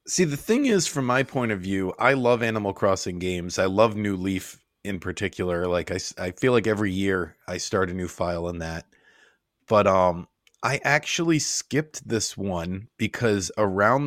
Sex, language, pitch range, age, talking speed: male, English, 95-115 Hz, 30-49, 185 wpm